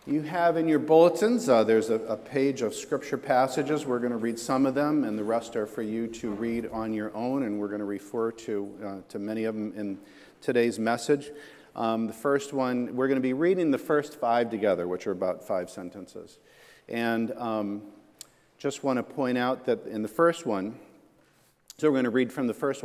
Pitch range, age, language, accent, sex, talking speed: 110-140 Hz, 50-69, English, American, male, 220 wpm